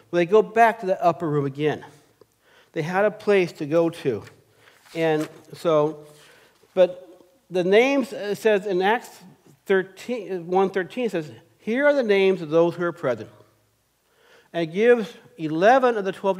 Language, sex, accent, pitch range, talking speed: English, male, American, 155-195 Hz, 160 wpm